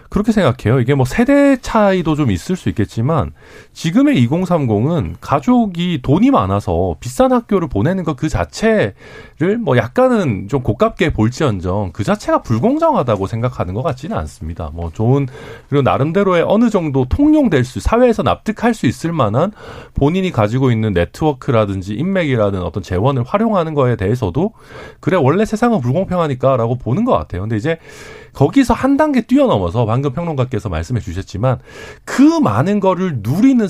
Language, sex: Korean, male